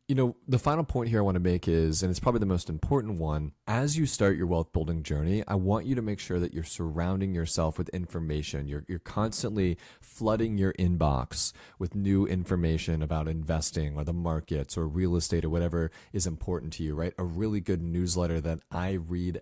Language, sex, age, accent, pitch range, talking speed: English, male, 30-49, American, 85-105 Hz, 210 wpm